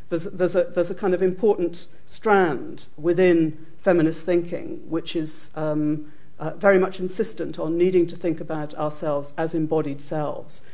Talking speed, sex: 150 wpm, female